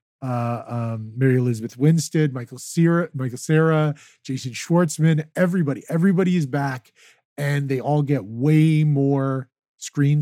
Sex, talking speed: male, 130 wpm